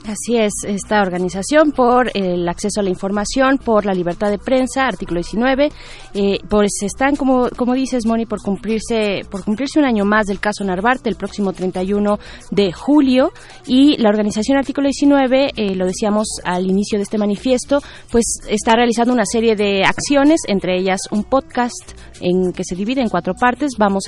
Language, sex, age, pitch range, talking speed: Spanish, female, 20-39, 185-225 Hz, 175 wpm